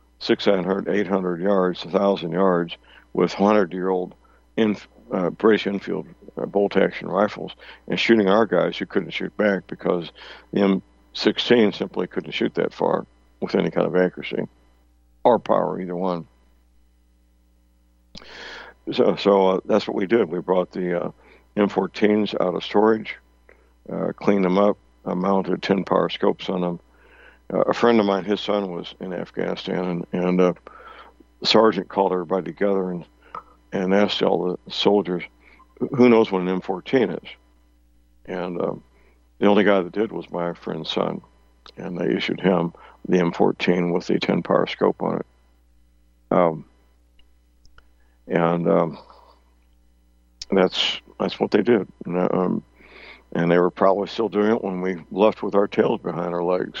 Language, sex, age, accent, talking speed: English, male, 60-79, American, 150 wpm